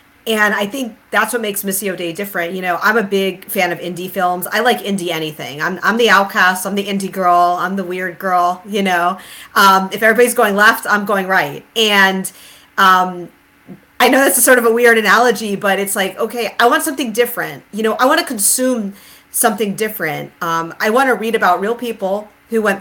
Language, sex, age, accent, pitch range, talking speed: English, female, 40-59, American, 185-235 Hz, 210 wpm